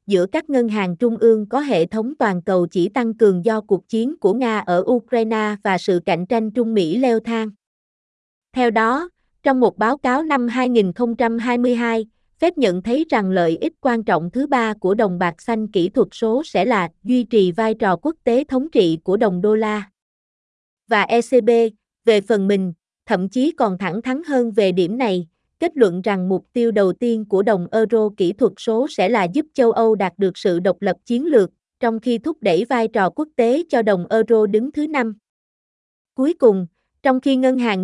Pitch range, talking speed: 200-250 Hz, 200 wpm